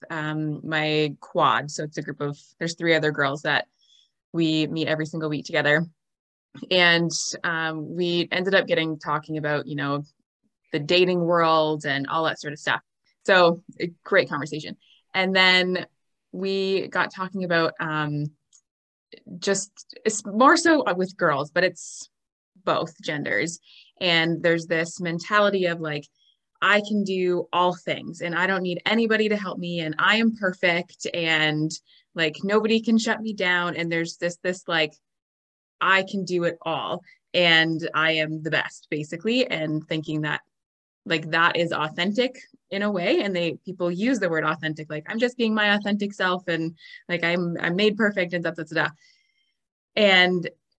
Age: 20-39